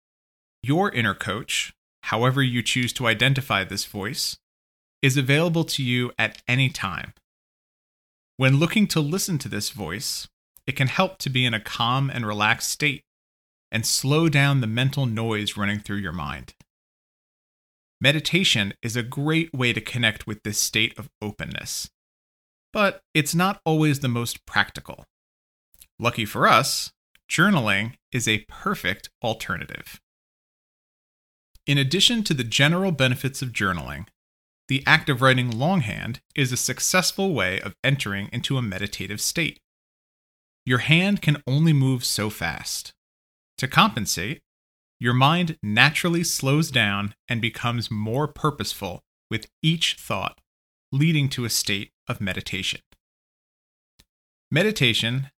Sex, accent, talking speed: male, American, 135 wpm